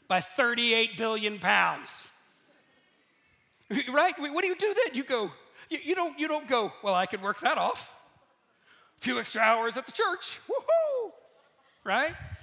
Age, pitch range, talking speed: 40-59, 245-335 Hz, 160 wpm